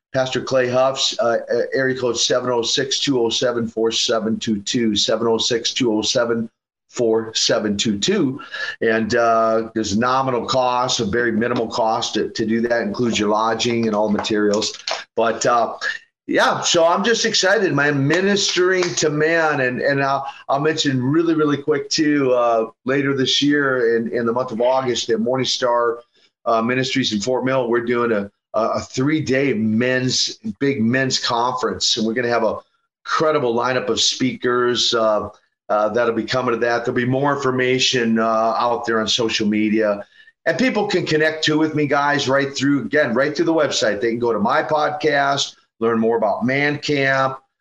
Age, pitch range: 40-59, 115-140 Hz